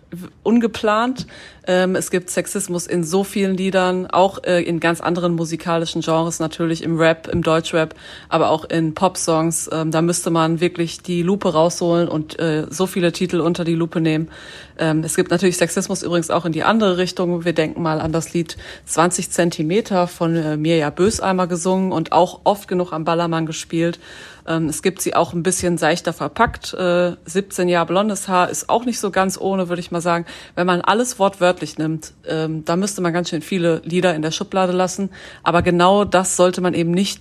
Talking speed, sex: 180 wpm, female